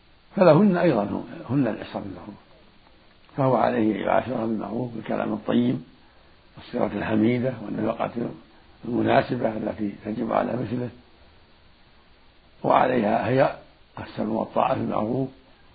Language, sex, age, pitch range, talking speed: Arabic, male, 60-79, 90-130 Hz, 90 wpm